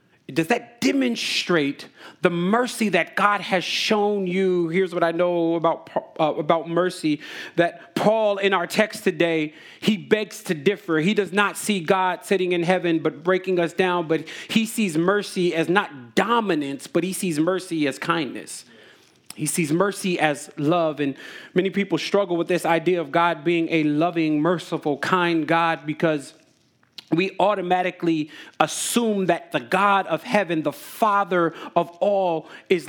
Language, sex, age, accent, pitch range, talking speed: English, male, 30-49, American, 160-185 Hz, 160 wpm